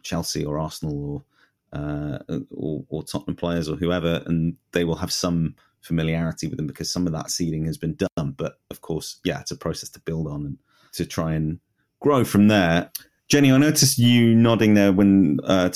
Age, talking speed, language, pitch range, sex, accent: 30-49, 200 wpm, English, 80-100 Hz, male, British